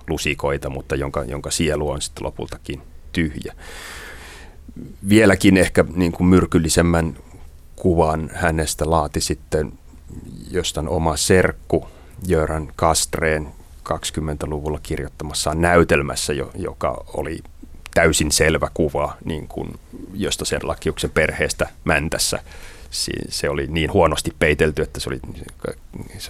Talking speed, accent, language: 105 wpm, native, Finnish